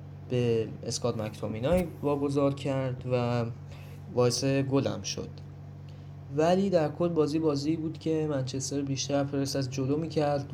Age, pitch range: 10-29, 120-145 Hz